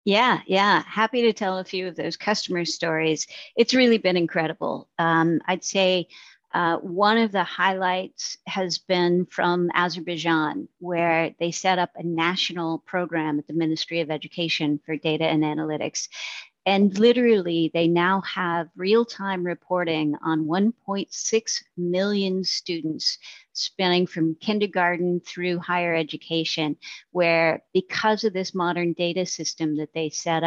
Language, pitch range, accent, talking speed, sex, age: English, 165-195 Hz, American, 140 wpm, female, 50-69